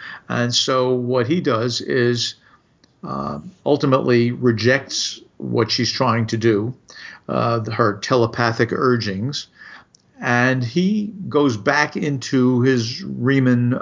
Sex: male